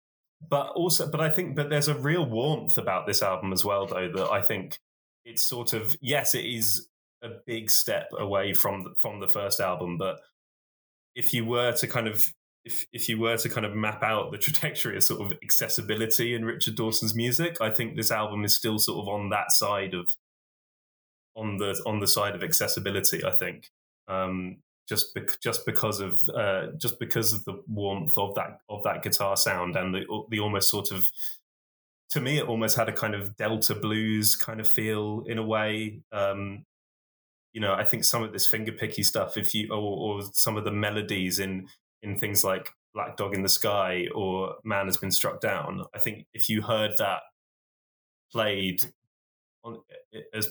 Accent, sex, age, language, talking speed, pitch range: British, male, 10-29, English, 195 wpm, 100-115 Hz